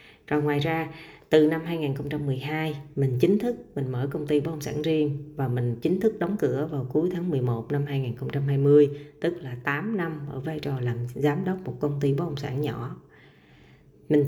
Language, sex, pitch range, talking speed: Vietnamese, female, 135-155 Hz, 200 wpm